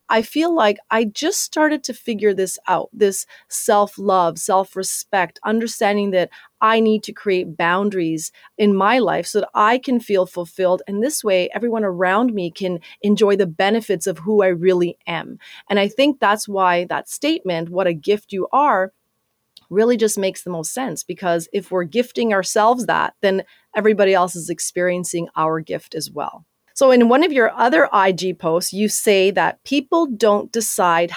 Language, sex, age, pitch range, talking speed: English, female, 30-49, 180-220 Hz, 175 wpm